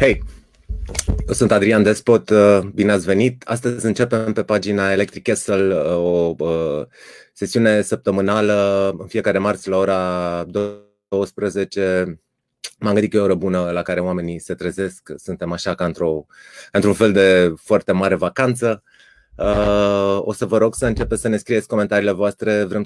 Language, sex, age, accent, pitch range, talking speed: Romanian, male, 30-49, native, 90-110 Hz, 145 wpm